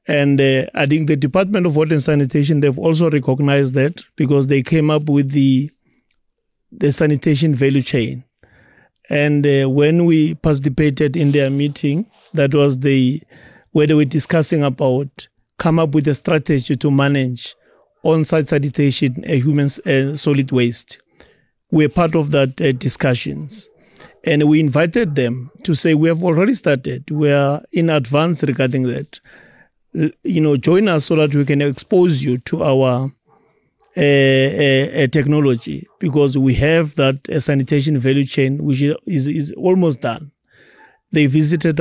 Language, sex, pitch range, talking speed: English, male, 140-160 Hz, 155 wpm